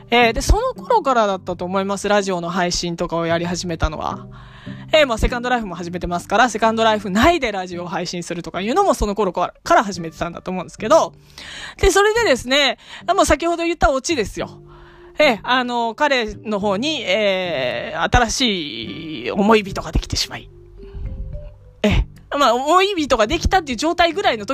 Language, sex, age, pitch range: Japanese, female, 20-39, 185-285 Hz